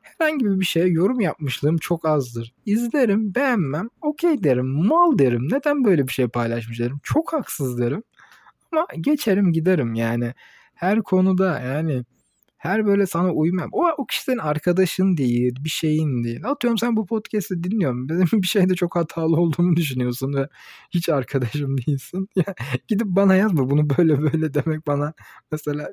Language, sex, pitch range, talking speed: Turkish, male, 125-185 Hz, 155 wpm